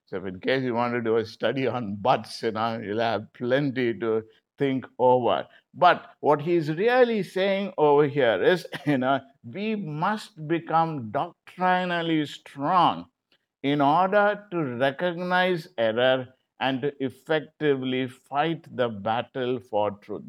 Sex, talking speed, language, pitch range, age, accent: male, 140 wpm, English, 125-170 Hz, 50-69, Indian